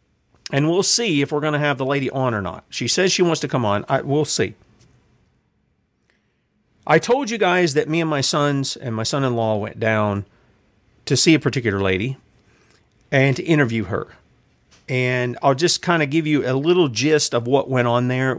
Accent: American